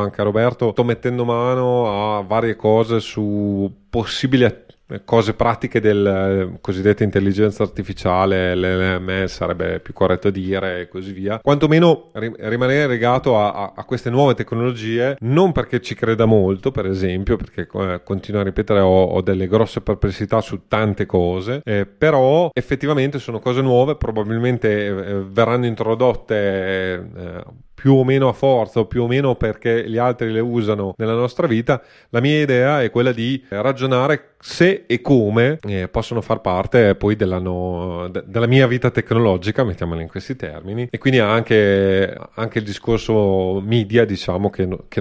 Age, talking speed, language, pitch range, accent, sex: 30-49, 160 wpm, Italian, 100-125 Hz, native, male